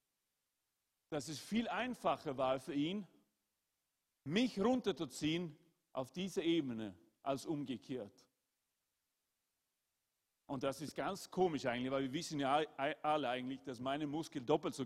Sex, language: male, German